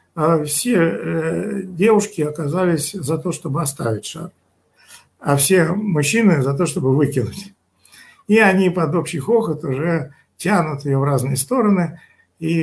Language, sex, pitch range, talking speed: Russian, male, 135-195 Hz, 130 wpm